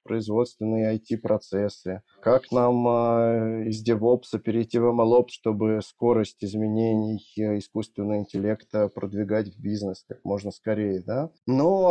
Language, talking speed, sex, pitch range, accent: Russian, 105 wpm, male, 105-130 Hz, native